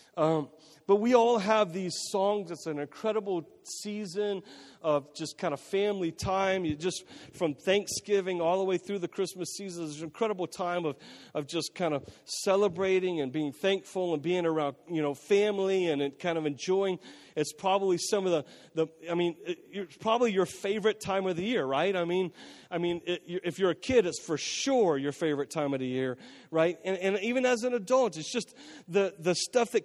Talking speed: 200 wpm